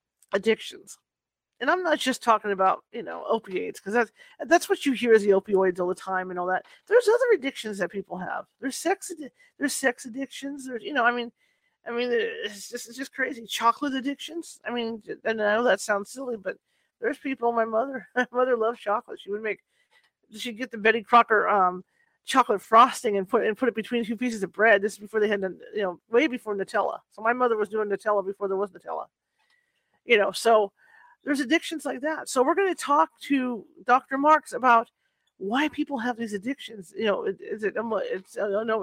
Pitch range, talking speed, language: 210-275 Hz, 210 wpm, English